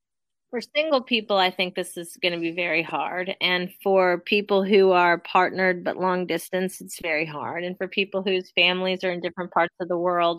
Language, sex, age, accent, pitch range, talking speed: English, female, 30-49, American, 175-210 Hz, 210 wpm